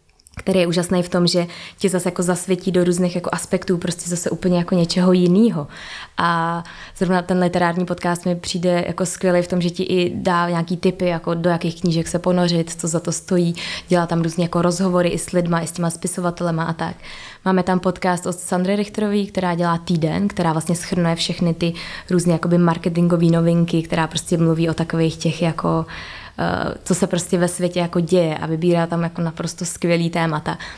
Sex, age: female, 20-39